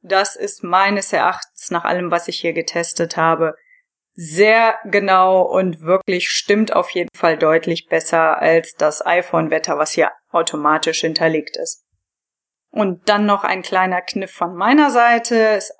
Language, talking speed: German, 150 wpm